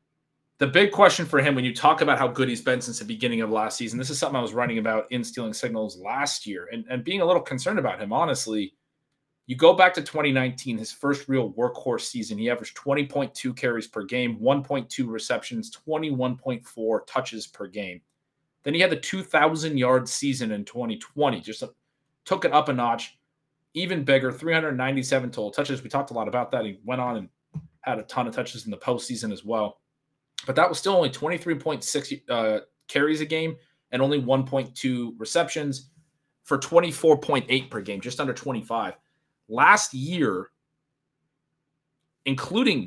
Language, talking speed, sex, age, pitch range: English, 175 wpm, male, 30-49, 125-155 Hz